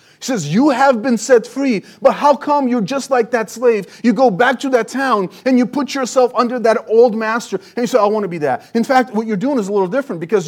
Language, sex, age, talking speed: English, male, 30-49, 270 wpm